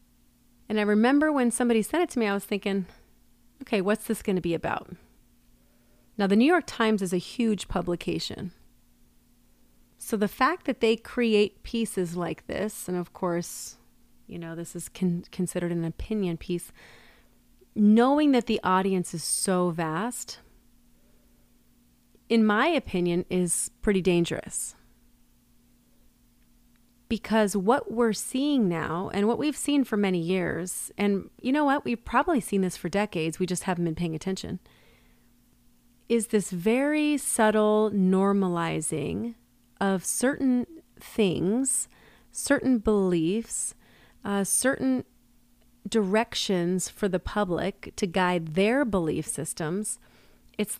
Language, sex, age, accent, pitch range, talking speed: English, female, 30-49, American, 165-225 Hz, 130 wpm